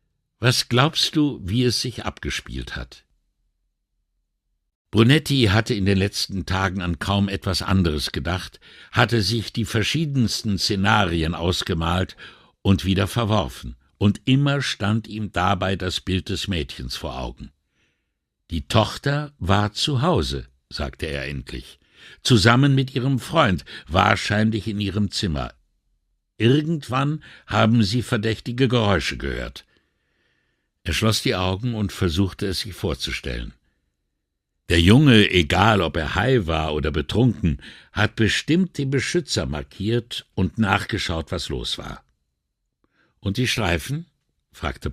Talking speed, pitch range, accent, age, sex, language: 125 wpm, 80-120 Hz, German, 60-79, male, English